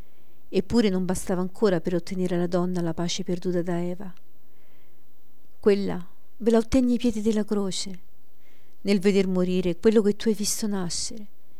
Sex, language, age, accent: female, Italian, 50-69, native